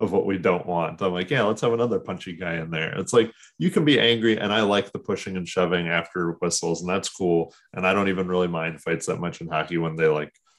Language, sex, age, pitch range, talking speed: English, male, 30-49, 85-110 Hz, 265 wpm